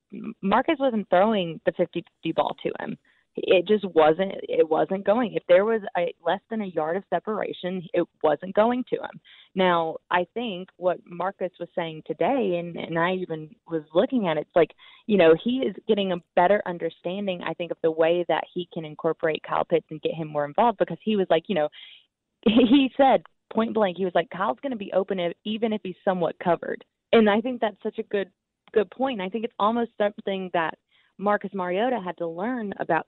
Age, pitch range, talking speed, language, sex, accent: 20-39, 165-205 Hz, 210 wpm, English, female, American